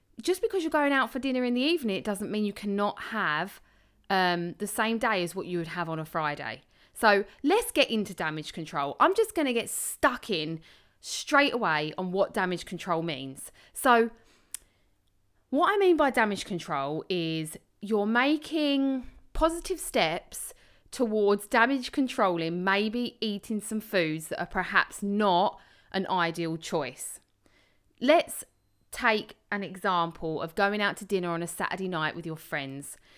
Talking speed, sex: 165 wpm, female